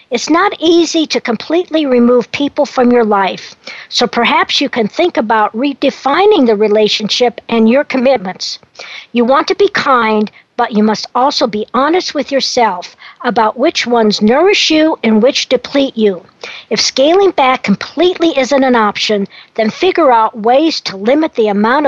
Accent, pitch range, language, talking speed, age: American, 220-295 Hz, English, 160 wpm, 50-69